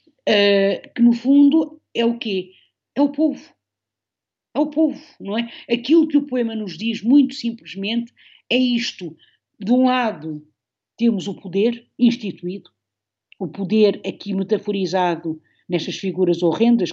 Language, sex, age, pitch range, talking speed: Portuguese, female, 50-69, 180-230 Hz, 135 wpm